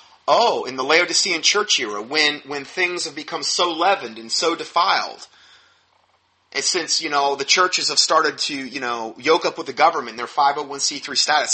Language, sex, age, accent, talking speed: English, male, 30-49, American, 185 wpm